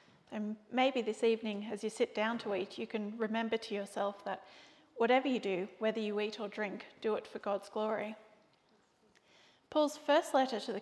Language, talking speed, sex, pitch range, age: English, 190 wpm, female, 210-245 Hz, 30-49